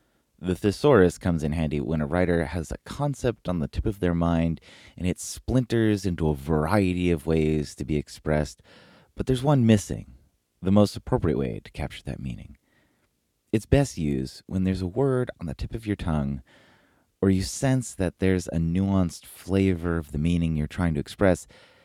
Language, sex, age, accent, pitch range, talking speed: English, male, 30-49, American, 80-100 Hz, 185 wpm